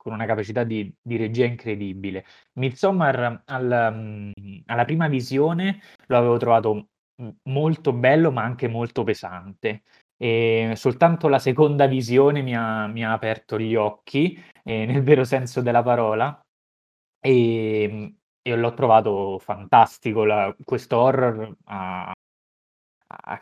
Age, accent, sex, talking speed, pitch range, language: 20-39, native, male, 125 wpm, 110-135 Hz, Italian